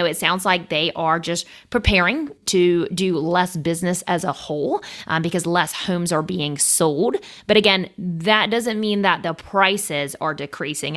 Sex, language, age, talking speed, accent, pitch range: female, English, 30-49, 170 wpm, American, 165-205 Hz